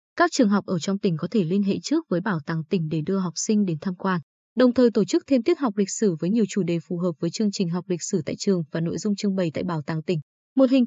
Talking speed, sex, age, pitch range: 310 wpm, female, 20-39, 185-240 Hz